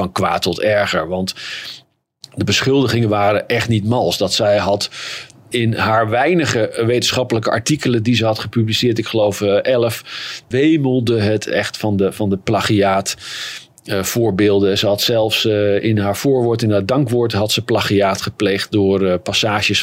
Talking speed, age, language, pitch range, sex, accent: 150 wpm, 40-59, Dutch, 105-125 Hz, male, Dutch